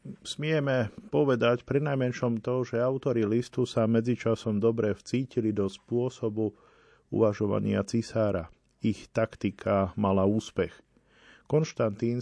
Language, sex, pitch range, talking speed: Slovak, male, 100-115 Hz, 105 wpm